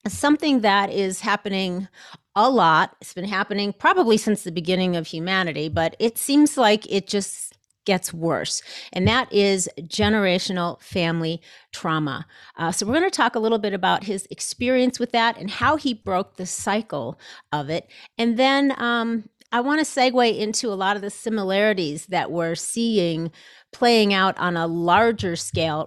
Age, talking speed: 40-59, 170 wpm